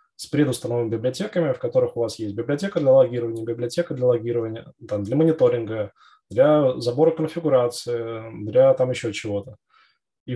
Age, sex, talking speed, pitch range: 20-39, male, 145 wpm, 110-155 Hz